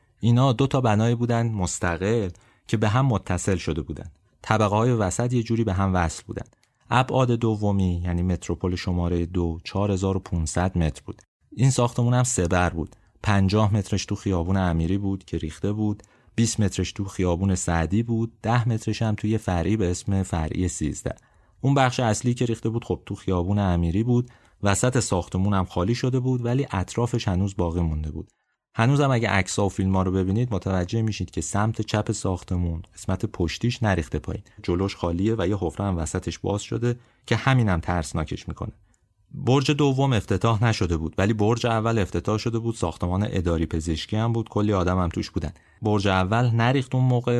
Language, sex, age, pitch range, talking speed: Persian, male, 30-49, 90-115 Hz, 175 wpm